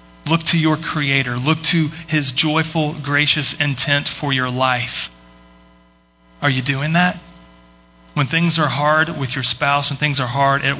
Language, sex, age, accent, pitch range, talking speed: English, male, 30-49, American, 125-150 Hz, 160 wpm